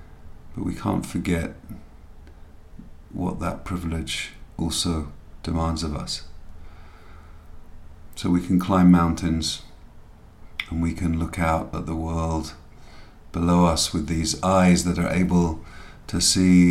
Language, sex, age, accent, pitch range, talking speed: English, male, 50-69, British, 75-90 Hz, 120 wpm